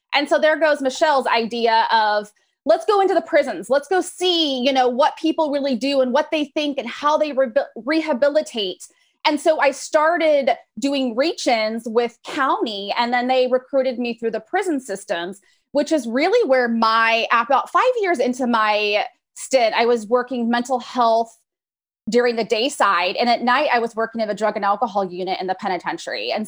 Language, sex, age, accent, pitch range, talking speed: English, female, 20-39, American, 225-280 Hz, 185 wpm